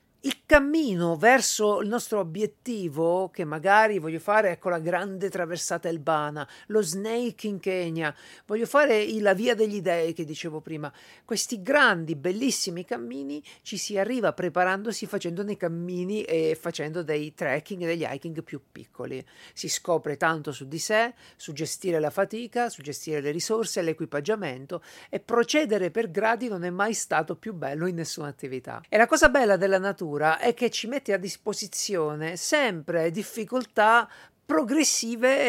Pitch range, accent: 165-220 Hz, native